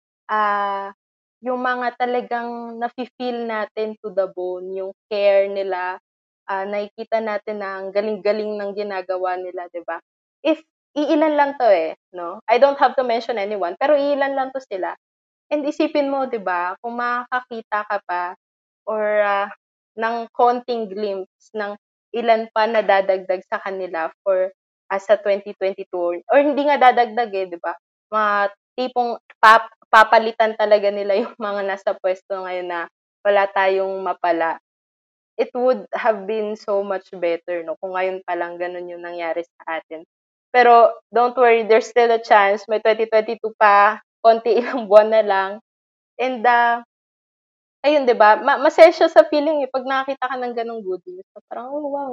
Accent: Filipino